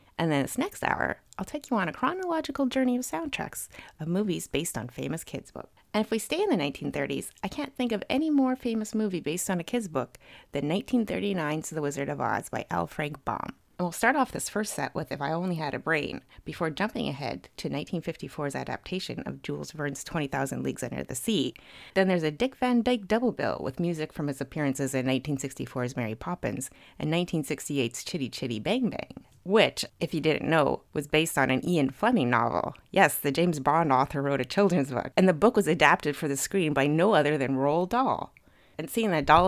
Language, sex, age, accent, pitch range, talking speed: English, female, 30-49, American, 140-205 Hz, 215 wpm